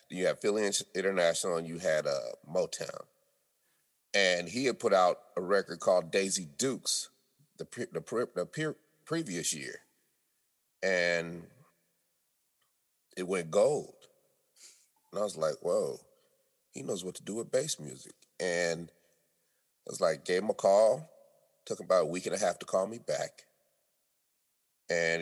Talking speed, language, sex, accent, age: 155 wpm, English, male, American, 30-49